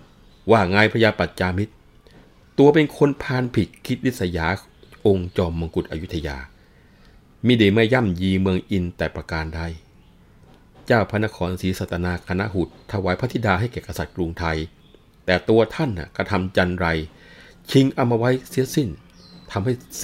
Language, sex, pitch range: Thai, male, 85-105 Hz